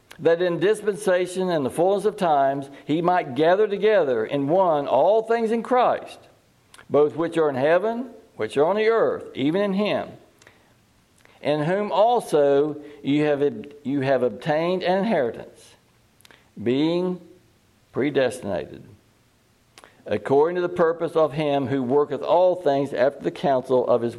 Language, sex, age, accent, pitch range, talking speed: English, male, 60-79, American, 135-200 Hz, 145 wpm